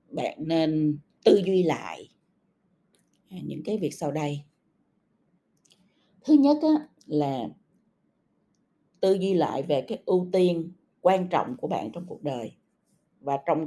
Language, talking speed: Vietnamese, 125 wpm